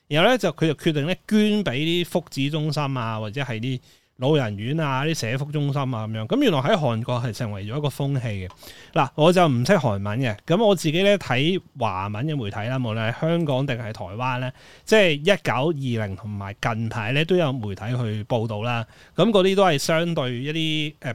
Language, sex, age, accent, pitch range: Chinese, male, 30-49, native, 120-160 Hz